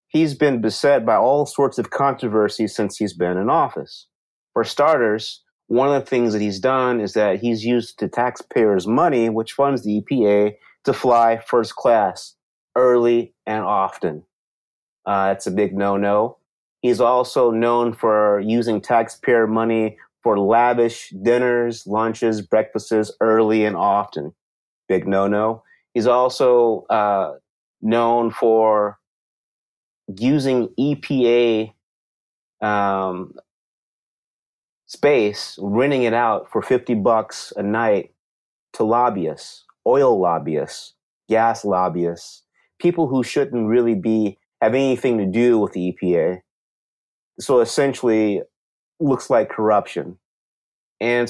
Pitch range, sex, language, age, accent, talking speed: 105-120 Hz, male, English, 30-49, American, 125 wpm